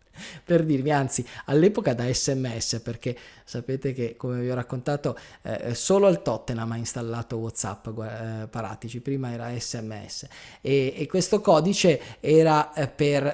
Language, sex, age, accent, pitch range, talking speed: Italian, male, 20-39, native, 115-140 Hz, 140 wpm